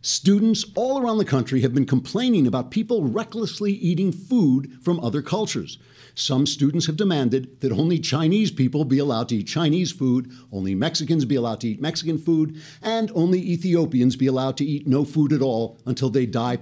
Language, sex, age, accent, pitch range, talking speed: English, male, 60-79, American, 125-180 Hz, 190 wpm